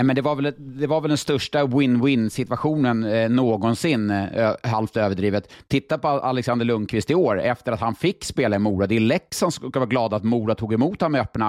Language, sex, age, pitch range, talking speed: Swedish, male, 30-49, 110-140 Hz, 220 wpm